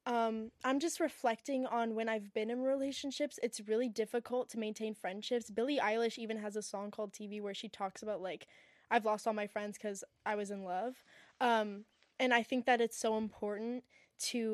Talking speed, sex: 200 wpm, female